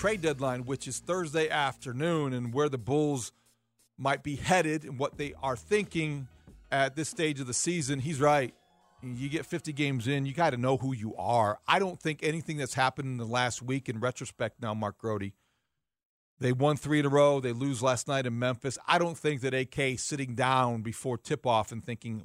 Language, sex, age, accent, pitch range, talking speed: English, male, 40-59, American, 120-150 Hz, 205 wpm